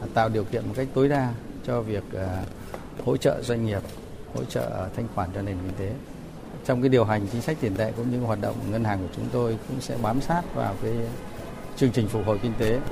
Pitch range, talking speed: 100-140 Hz, 230 wpm